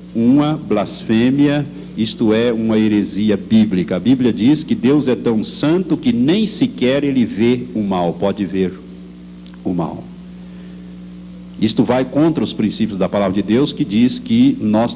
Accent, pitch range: Brazilian, 125-200 Hz